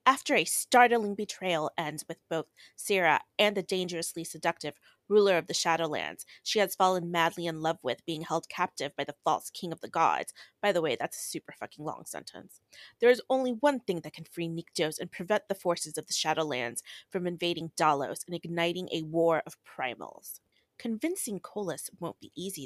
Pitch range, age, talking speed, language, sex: 165-205 Hz, 30-49, 190 wpm, English, female